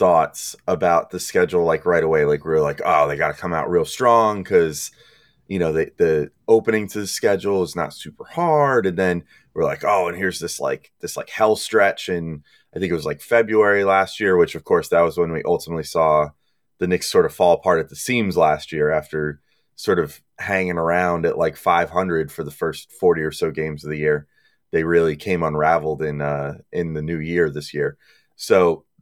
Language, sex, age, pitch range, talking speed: English, male, 30-49, 85-115 Hz, 220 wpm